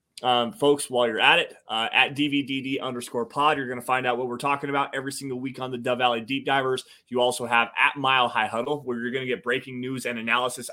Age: 20-39